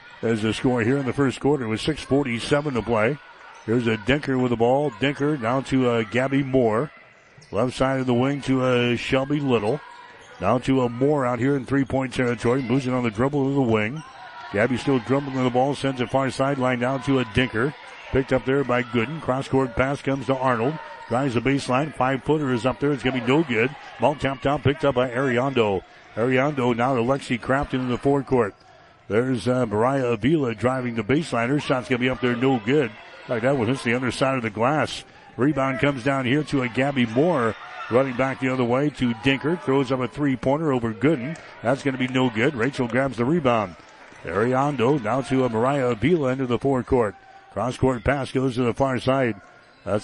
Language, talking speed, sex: English, 205 wpm, male